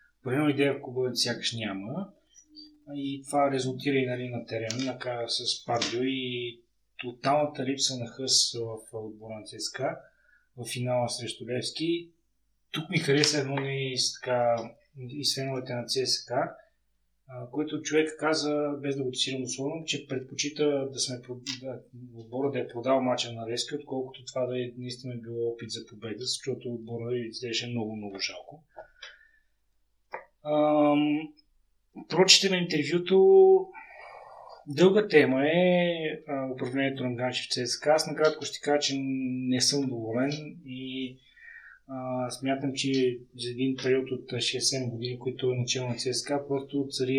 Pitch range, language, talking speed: 125-145 Hz, Bulgarian, 140 wpm